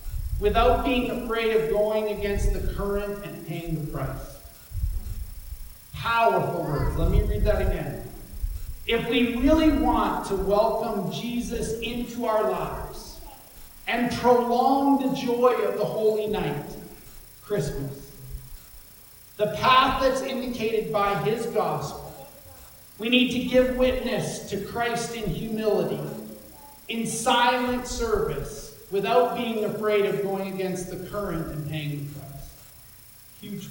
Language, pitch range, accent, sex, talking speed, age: English, 180-240 Hz, American, male, 125 wpm, 40-59